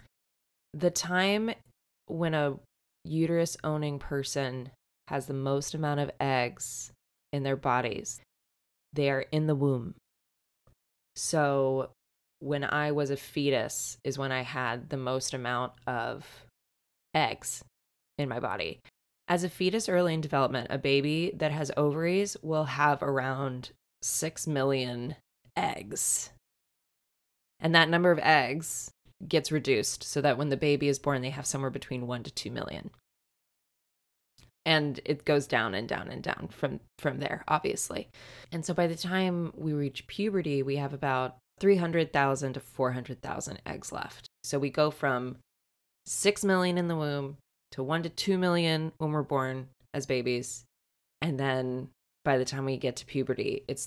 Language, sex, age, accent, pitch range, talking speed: English, female, 20-39, American, 125-155 Hz, 155 wpm